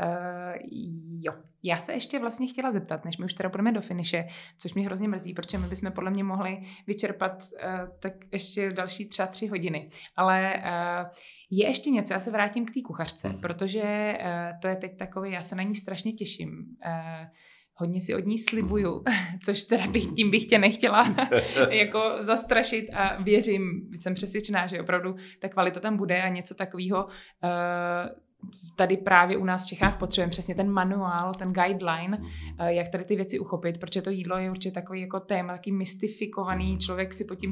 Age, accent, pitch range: 20-39, native, 180-210 Hz